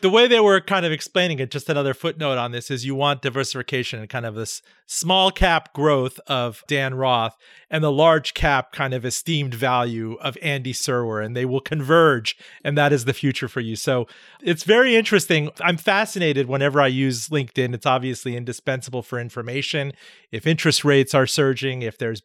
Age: 40-59